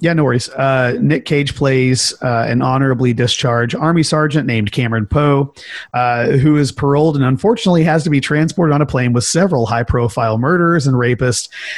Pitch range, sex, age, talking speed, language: 115-140 Hz, male, 30-49, 180 wpm, English